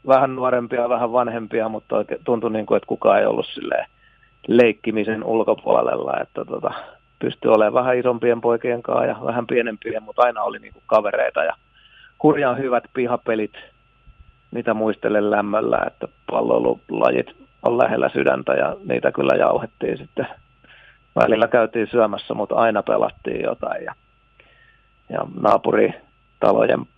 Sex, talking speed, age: male, 130 wpm, 40-59